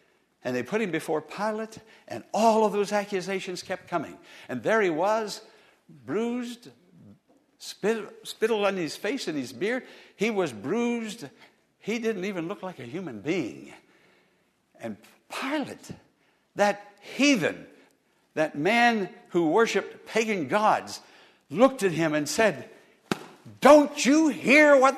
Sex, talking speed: male, 135 wpm